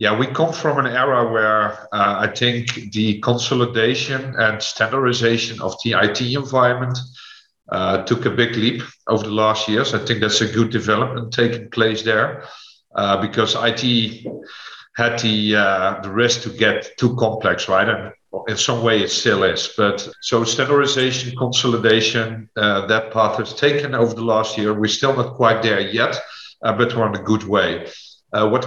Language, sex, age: English, male, 50-69